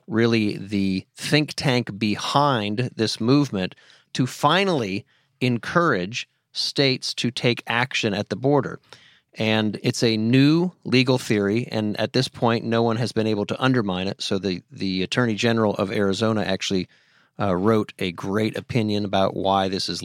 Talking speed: 155 wpm